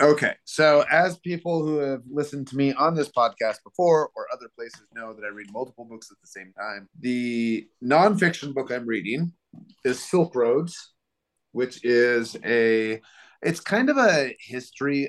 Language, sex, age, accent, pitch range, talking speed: English, male, 30-49, American, 100-125 Hz, 165 wpm